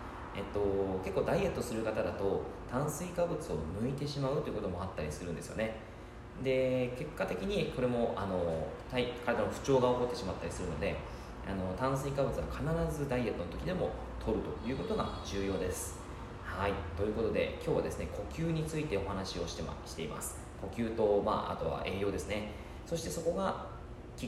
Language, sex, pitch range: Japanese, male, 90-125 Hz